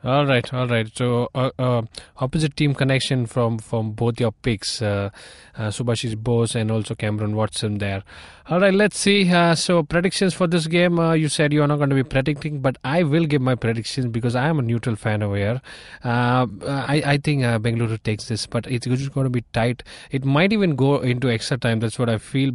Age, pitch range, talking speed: 20-39, 115-135 Hz, 215 wpm